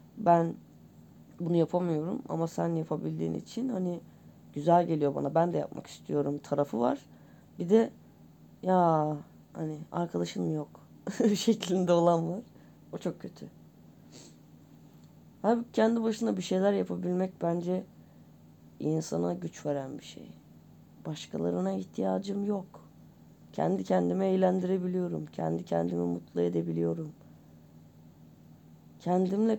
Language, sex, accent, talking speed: Turkish, female, native, 105 wpm